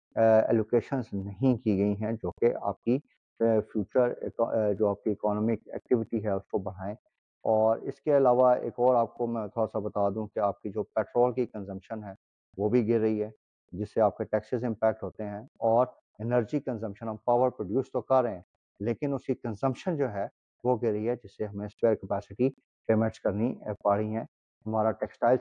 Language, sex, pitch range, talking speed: Urdu, male, 105-120 Hz, 200 wpm